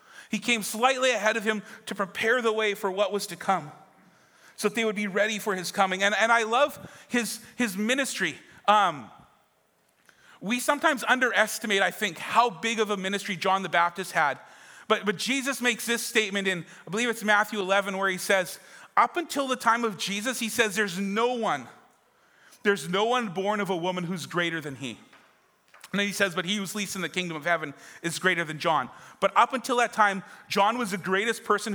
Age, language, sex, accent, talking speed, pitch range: 40-59, English, male, American, 210 wpm, 180-220 Hz